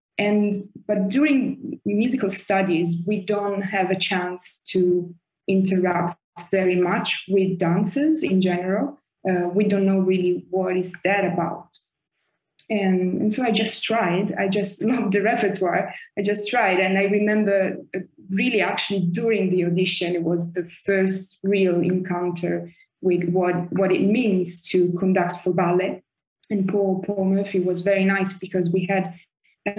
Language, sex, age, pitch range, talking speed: English, female, 20-39, 180-195 Hz, 150 wpm